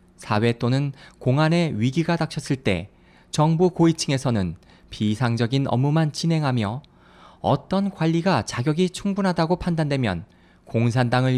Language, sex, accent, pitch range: Korean, male, native, 115-165 Hz